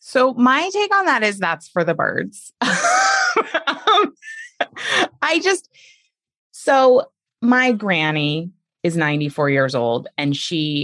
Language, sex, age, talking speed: English, female, 20-39, 120 wpm